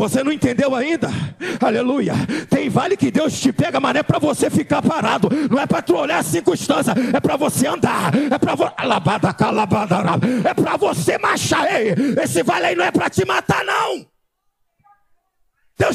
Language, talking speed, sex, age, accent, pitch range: Portuguese, 180 wpm, male, 40-59, Brazilian, 225-355 Hz